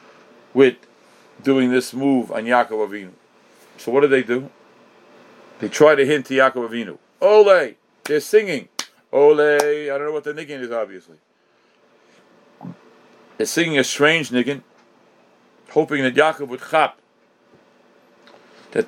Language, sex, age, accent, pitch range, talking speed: English, male, 50-69, American, 125-155 Hz, 135 wpm